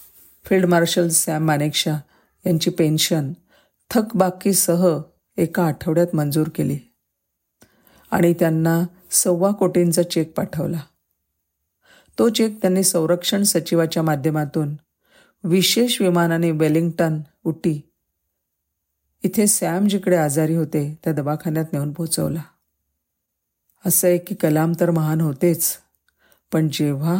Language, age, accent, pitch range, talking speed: Marathi, 50-69, native, 150-185 Hz, 65 wpm